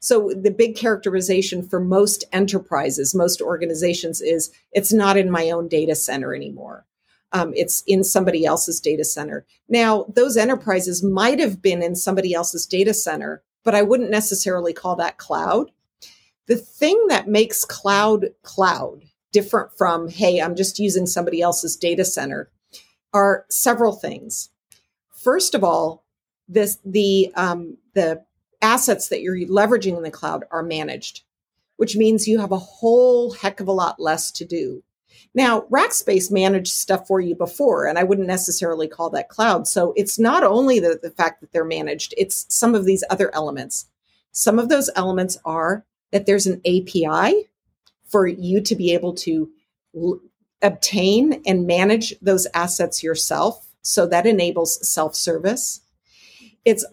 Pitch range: 175-220 Hz